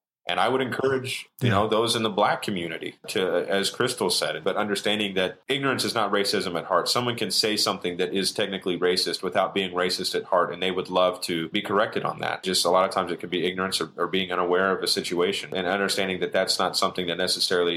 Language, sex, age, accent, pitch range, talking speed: English, male, 30-49, American, 90-105 Hz, 235 wpm